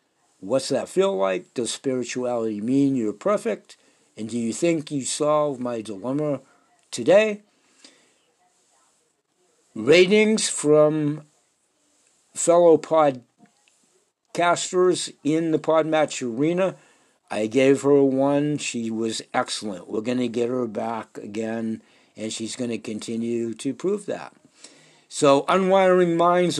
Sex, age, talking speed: male, 60-79, 115 wpm